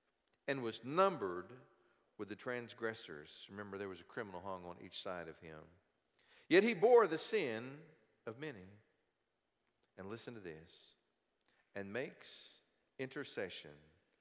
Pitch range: 90-115 Hz